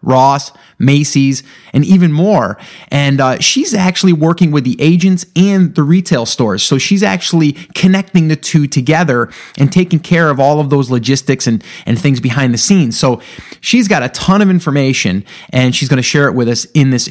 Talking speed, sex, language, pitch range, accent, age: 195 wpm, male, English, 130-170 Hz, American, 30-49